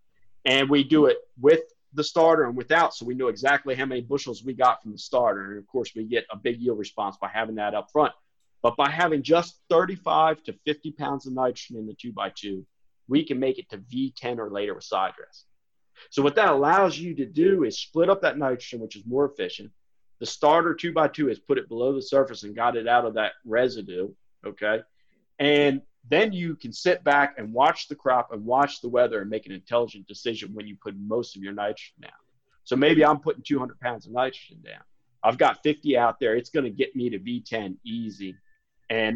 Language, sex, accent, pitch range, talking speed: English, male, American, 110-145 Hz, 220 wpm